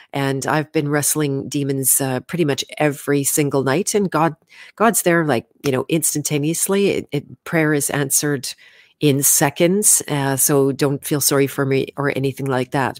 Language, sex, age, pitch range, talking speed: English, female, 40-59, 135-165 Hz, 170 wpm